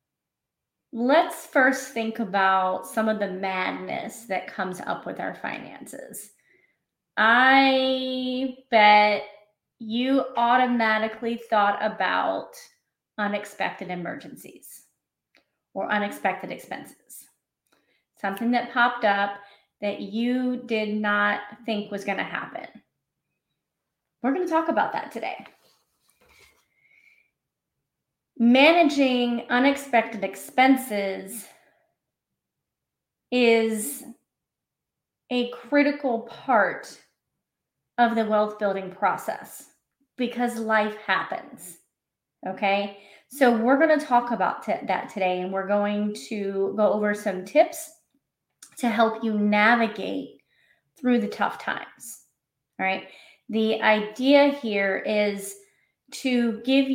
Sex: female